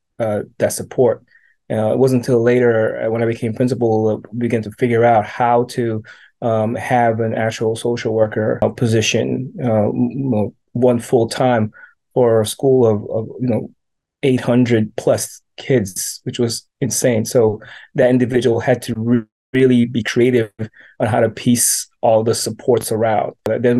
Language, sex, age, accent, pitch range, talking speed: English, male, 20-39, American, 115-125 Hz, 170 wpm